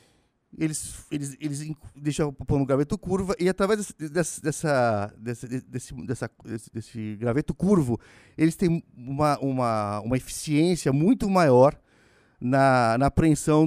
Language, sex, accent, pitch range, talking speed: Portuguese, male, Brazilian, 120-170 Hz, 125 wpm